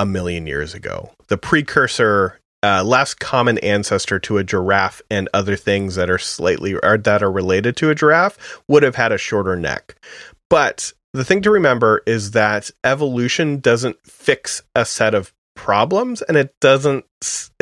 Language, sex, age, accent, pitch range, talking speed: English, male, 30-49, American, 95-145 Hz, 165 wpm